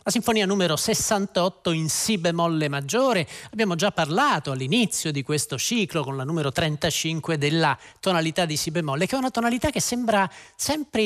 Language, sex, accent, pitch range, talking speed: Italian, male, native, 150-195 Hz, 170 wpm